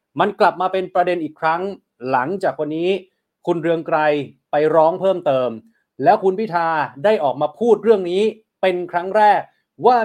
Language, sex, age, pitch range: Thai, male, 30-49, 150-190 Hz